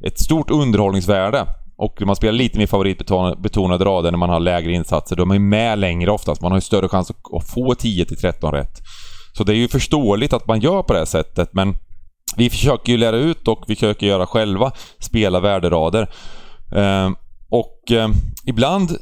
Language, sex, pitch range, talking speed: Swedish, male, 95-120 Hz, 175 wpm